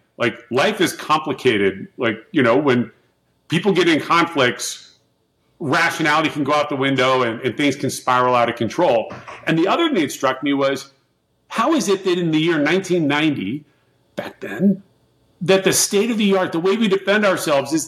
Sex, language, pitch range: male, English, 130-185 Hz